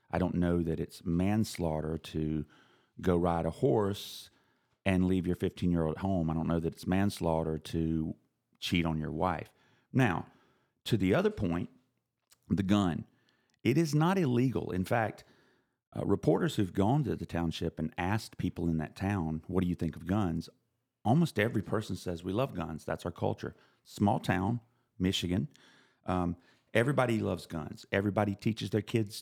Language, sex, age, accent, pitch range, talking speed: English, male, 40-59, American, 85-120 Hz, 165 wpm